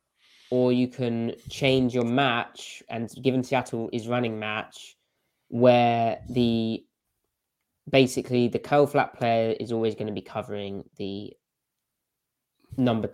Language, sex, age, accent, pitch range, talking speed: English, male, 20-39, British, 105-130 Hz, 125 wpm